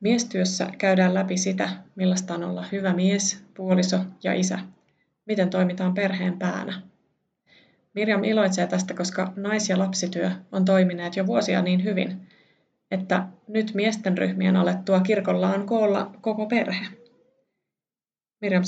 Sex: female